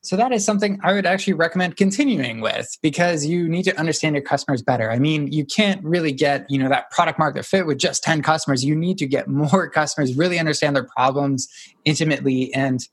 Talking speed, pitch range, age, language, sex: 215 wpm, 135-180 Hz, 20-39, English, male